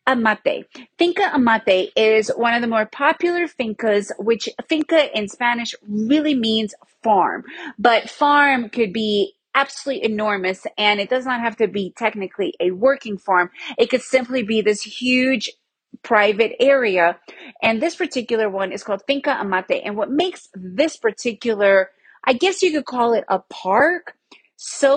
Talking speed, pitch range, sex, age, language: 155 wpm, 210-275 Hz, female, 30-49, English